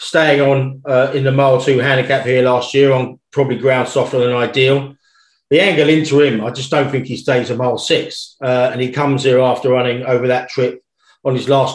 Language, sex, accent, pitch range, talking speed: English, male, British, 130-145 Hz, 220 wpm